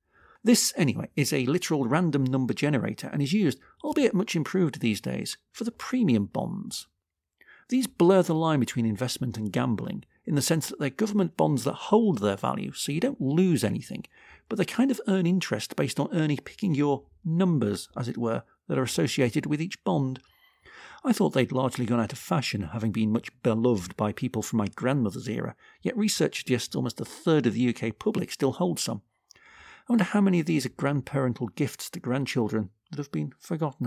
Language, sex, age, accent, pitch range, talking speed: English, male, 50-69, British, 120-185 Hz, 195 wpm